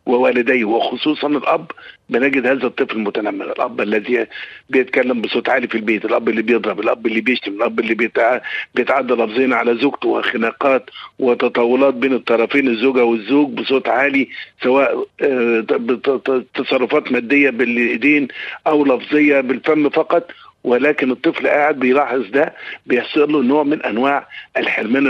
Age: 50-69